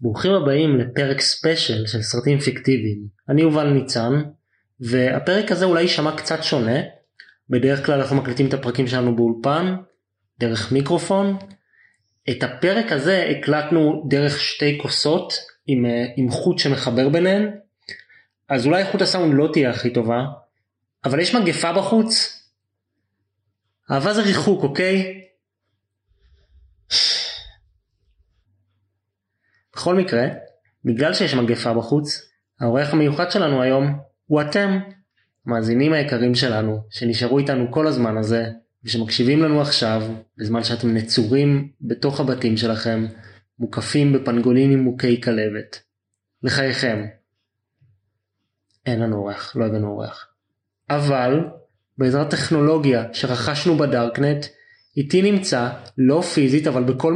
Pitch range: 110-150 Hz